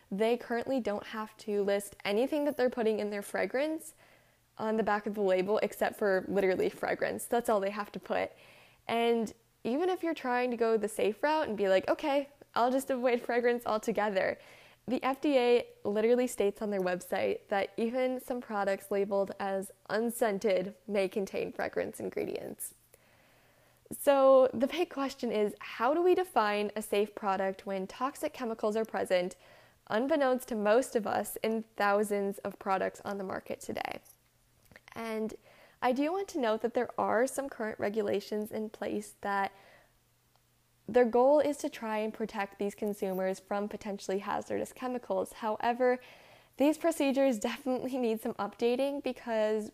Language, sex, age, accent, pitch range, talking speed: English, female, 10-29, American, 205-255 Hz, 160 wpm